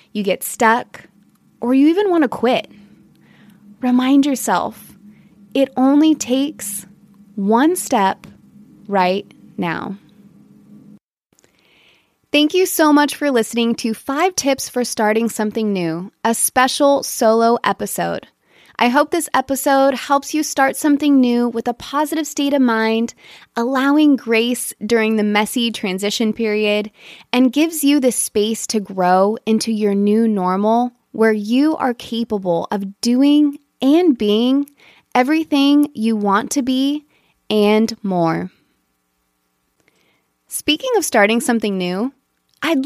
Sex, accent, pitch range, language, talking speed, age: female, American, 210-280 Hz, English, 125 wpm, 20-39